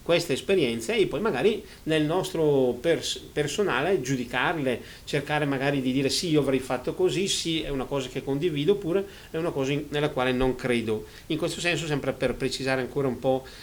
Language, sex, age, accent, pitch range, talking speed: Italian, male, 40-59, native, 125-155 Hz, 180 wpm